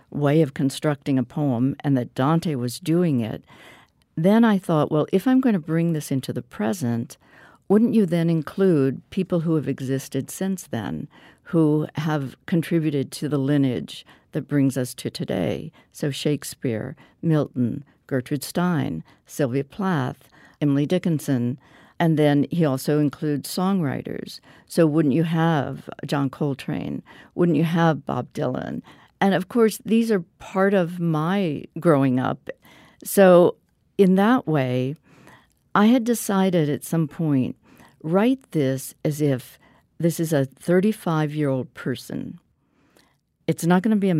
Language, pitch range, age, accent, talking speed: English, 140-175 Hz, 60-79, American, 145 wpm